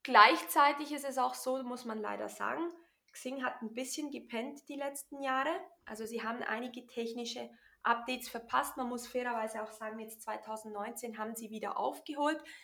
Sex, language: female, German